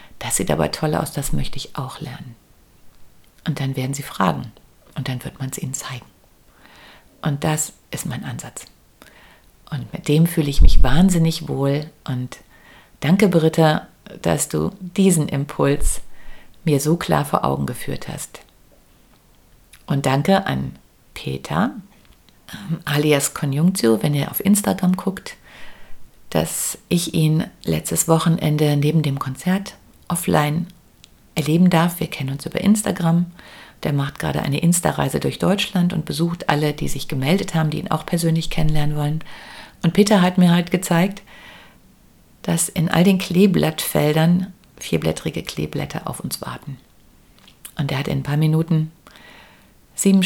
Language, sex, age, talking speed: German, female, 50-69, 145 wpm